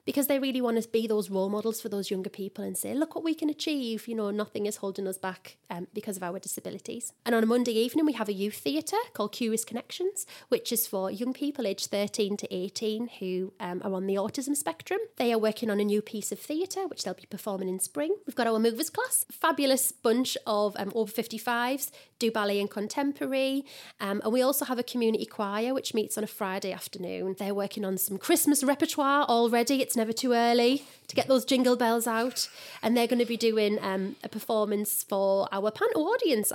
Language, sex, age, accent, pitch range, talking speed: English, female, 30-49, British, 205-270 Hz, 220 wpm